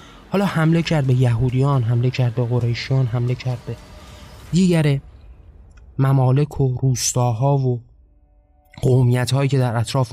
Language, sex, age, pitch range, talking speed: Persian, male, 20-39, 120-135 Hz, 125 wpm